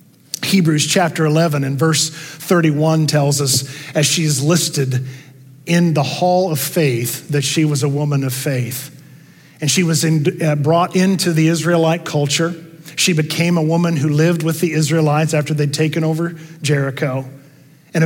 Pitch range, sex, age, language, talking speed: 130-160 Hz, male, 50-69, English, 160 wpm